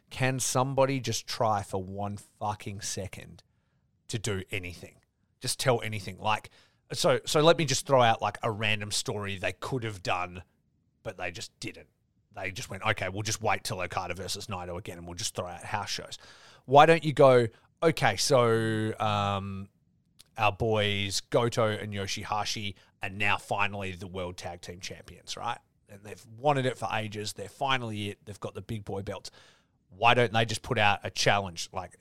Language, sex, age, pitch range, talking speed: English, male, 30-49, 100-130 Hz, 185 wpm